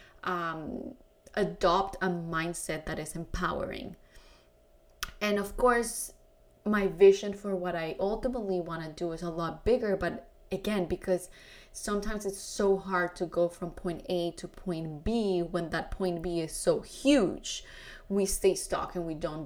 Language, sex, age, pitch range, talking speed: English, female, 20-39, 165-195 Hz, 155 wpm